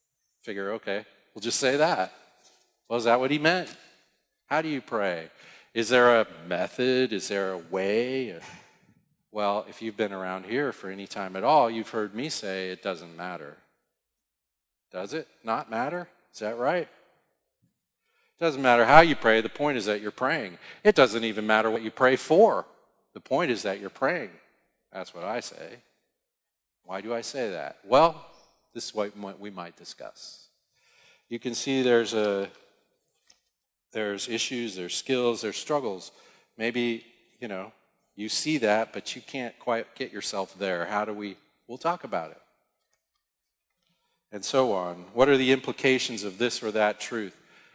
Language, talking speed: English, 165 wpm